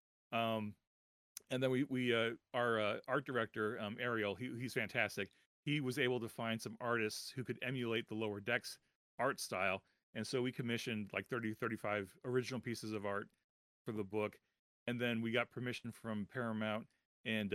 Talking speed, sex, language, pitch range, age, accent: 180 wpm, male, English, 105-120 Hz, 40-59, American